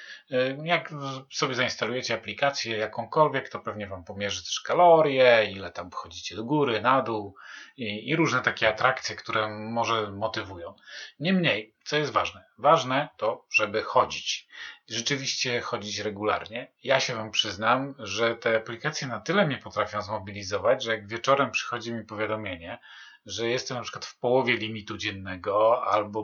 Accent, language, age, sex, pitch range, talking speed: native, Polish, 40-59, male, 110-135 Hz, 145 wpm